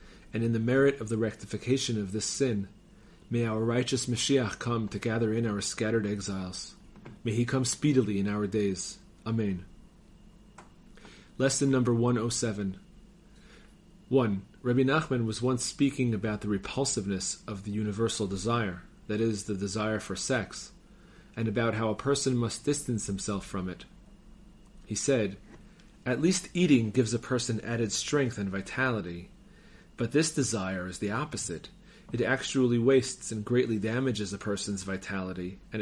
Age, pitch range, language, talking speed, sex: 40-59, 105-135 Hz, English, 150 wpm, male